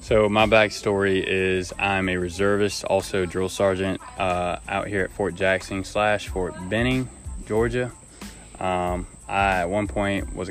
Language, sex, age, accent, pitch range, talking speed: English, male, 20-39, American, 85-95 Hz, 150 wpm